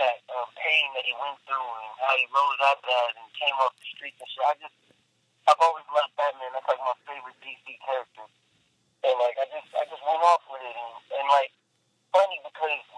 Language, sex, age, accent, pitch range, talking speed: English, male, 40-59, American, 125-150 Hz, 220 wpm